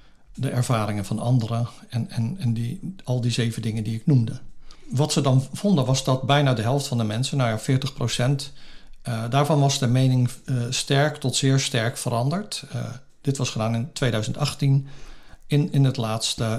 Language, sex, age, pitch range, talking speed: Dutch, male, 50-69, 120-145 Hz, 160 wpm